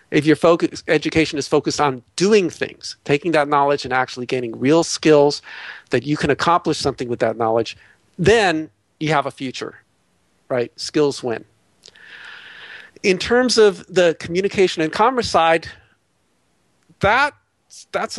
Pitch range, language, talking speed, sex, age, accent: 125-160 Hz, English, 140 wpm, male, 50-69, American